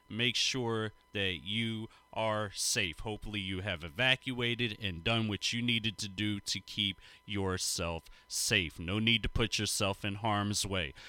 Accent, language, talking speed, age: American, English, 155 wpm, 30-49